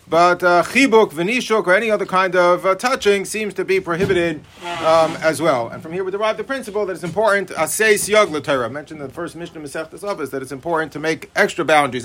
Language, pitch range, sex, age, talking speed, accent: English, 165-210 Hz, male, 40-59, 235 wpm, American